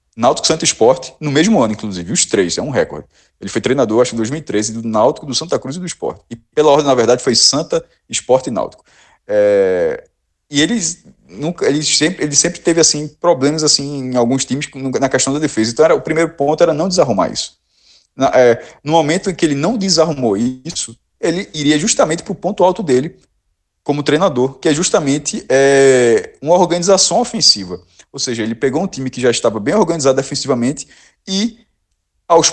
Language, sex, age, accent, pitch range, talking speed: Portuguese, male, 20-39, Brazilian, 125-175 Hz, 175 wpm